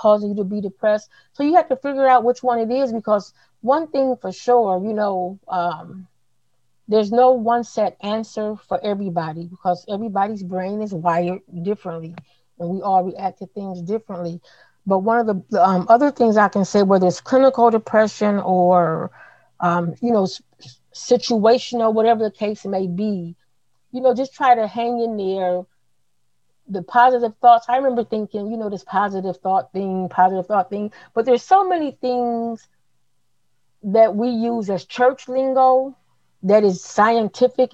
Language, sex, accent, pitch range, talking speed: English, female, American, 185-235 Hz, 165 wpm